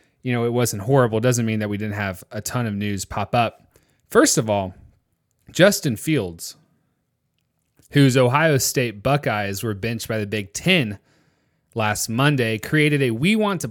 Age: 30-49